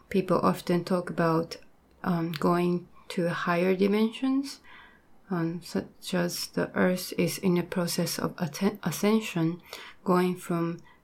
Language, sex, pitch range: Japanese, female, 175-195 Hz